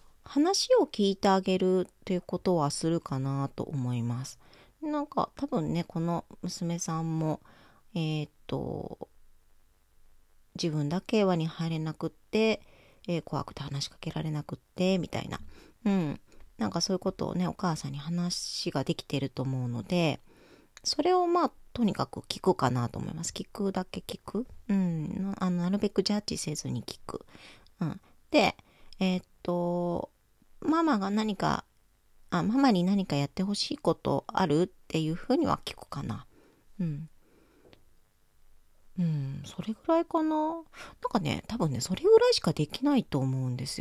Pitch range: 145-205 Hz